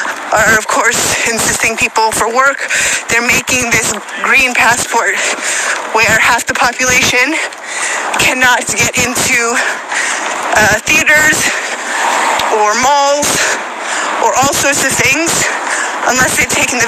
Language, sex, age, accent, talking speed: English, female, 30-49, American, 115 wpm